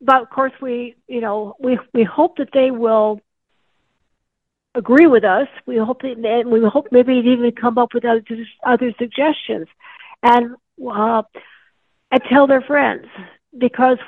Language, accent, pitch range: English, American, 225-265 Hz